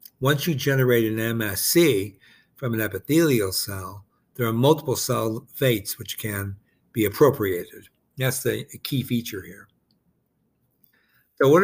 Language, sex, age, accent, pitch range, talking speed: English, male, 60-79, American, 105-125 Hz, 130 wpm